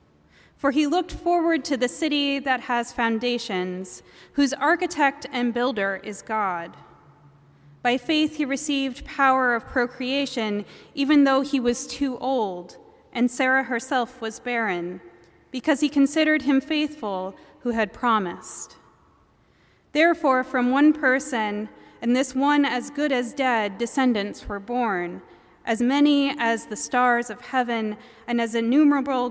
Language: English